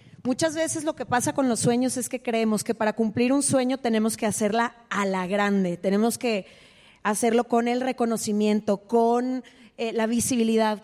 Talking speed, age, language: 175 wpm, 30-49, Spanish